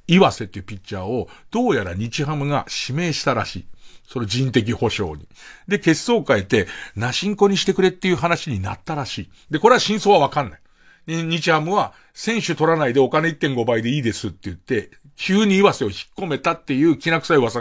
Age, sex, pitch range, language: 50-69, male, 120-190 Hz, Japanese